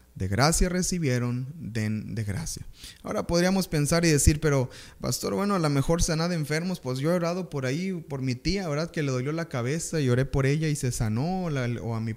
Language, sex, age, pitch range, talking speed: Spanish, male, 20-39, 110-155 Hz, 230 wpm